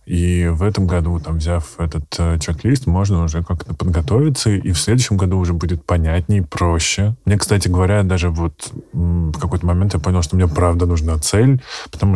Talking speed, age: 190 wpm, 20-39